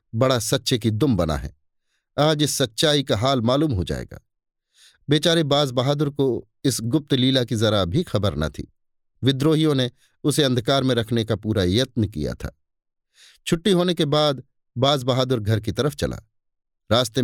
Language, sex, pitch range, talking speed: Hindi, male, 110-145 Hz, 170 wpm